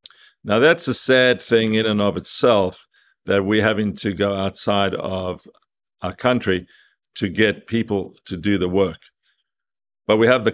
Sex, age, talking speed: male, 50-69, 165 wpm